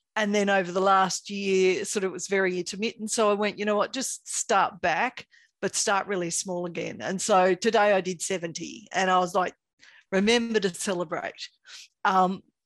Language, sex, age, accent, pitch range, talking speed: English, female, 40-59, Australian, 185-230 Hz, 190 wpm